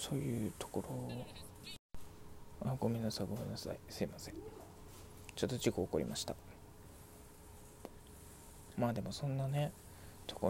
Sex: male